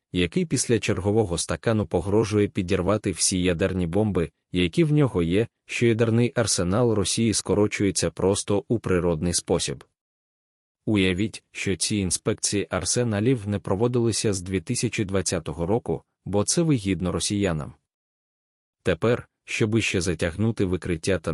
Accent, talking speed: native, 120 wpm